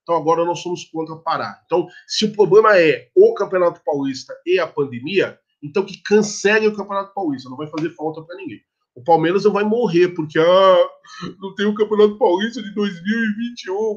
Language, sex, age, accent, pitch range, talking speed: Portuguese, male, 20-39, Brazilian, 155-215 Hz, 185 wpm